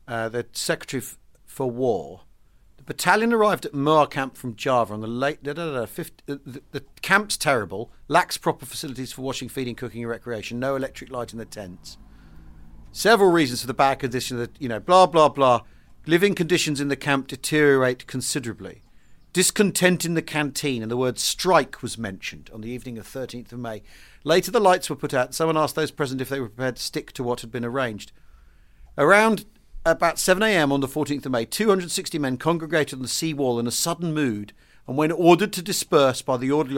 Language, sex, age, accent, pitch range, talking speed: English, male, 40-59, British, 120-160 Hz, 205 wpm